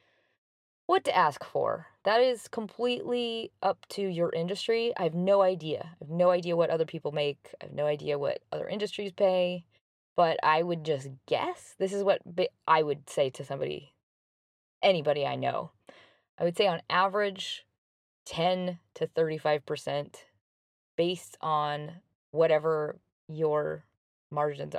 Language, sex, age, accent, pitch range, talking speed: English, female, 20-39, American, 150-195 Hz, 150 wpm